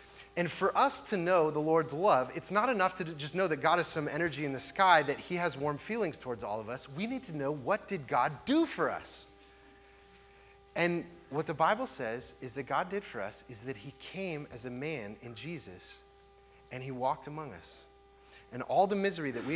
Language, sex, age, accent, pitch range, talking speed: English, male, 30-49, American, 135-190 Hz, 220 wpm